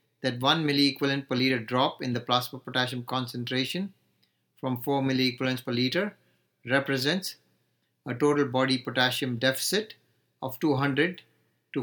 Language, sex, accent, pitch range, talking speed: English, male, Indian, 125-140 Hz, 125 wpm